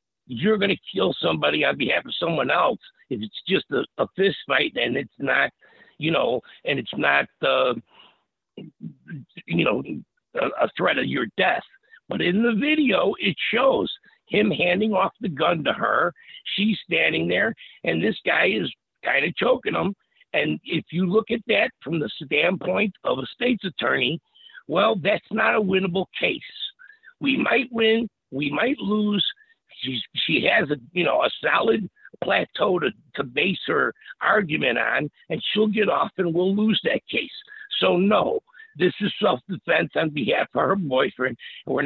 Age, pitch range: 60-79, 185-250 Hz